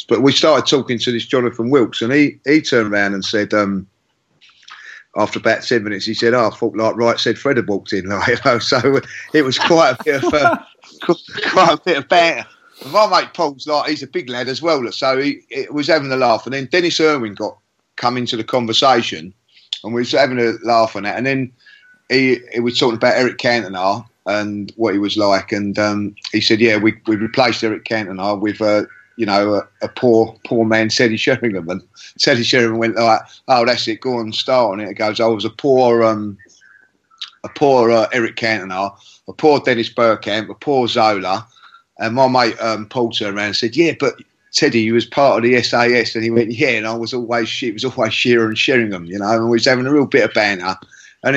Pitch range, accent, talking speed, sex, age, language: 110-130 Hz, British, 225 wpm, male, 30-49, English